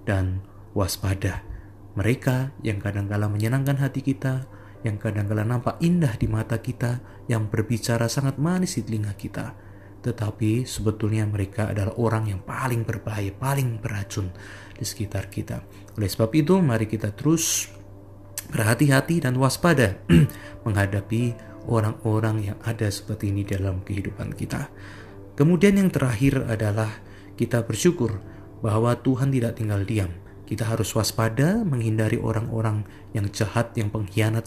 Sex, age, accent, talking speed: male, 30-49, native, 125 wpm